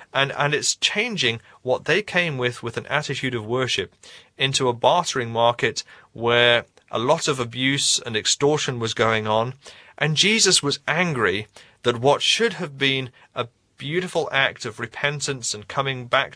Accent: British